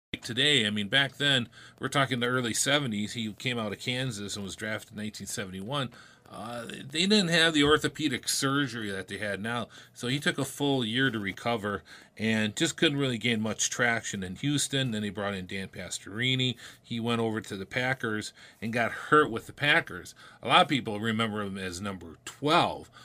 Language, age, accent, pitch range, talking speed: English, 40-59, American, 100-135 Hz, 195 wpm